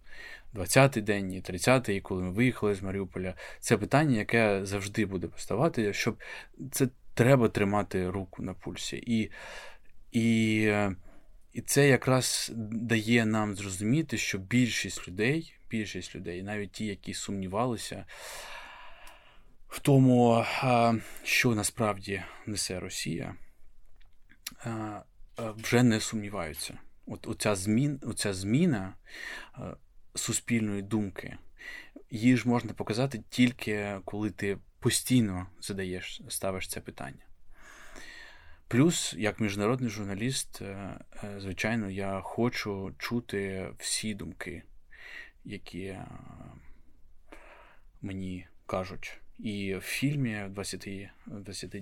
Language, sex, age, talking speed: Ukrainian, male, 20-39, 95 wpm